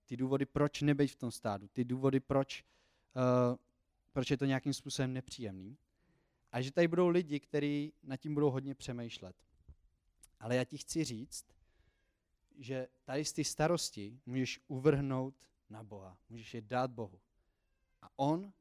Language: Czech